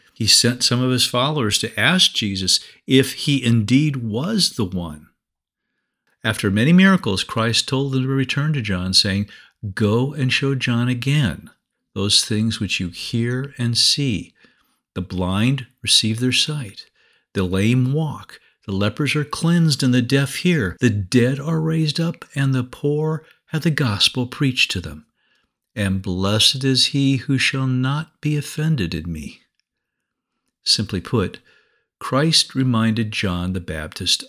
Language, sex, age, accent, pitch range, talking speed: English, male, 50-69, American, 105-140 Hz, 150 wpm